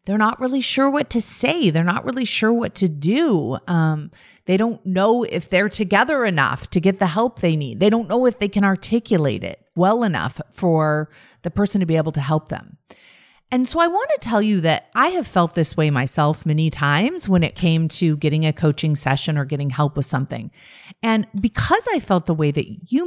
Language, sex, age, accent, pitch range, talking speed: English, female, 40-59, American, 155-225 Hz, 220 wpm